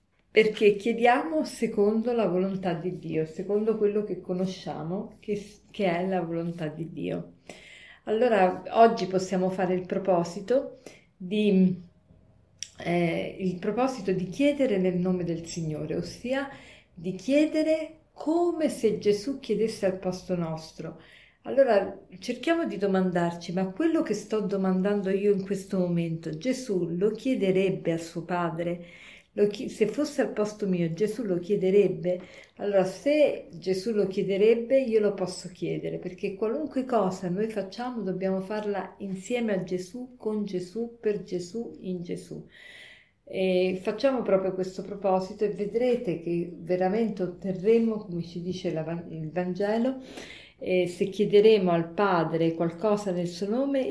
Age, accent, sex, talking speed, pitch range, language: 50-69, native, female, 130 wpm, 180-220 Hz, Italian